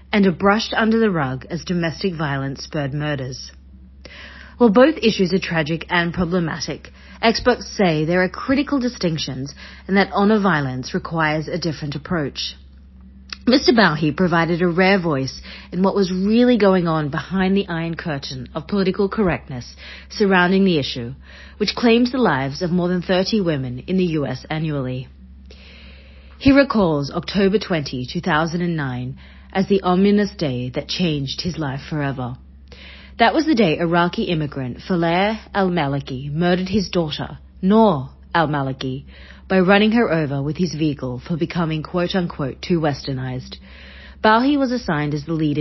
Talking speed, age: 145 wpm, 40-59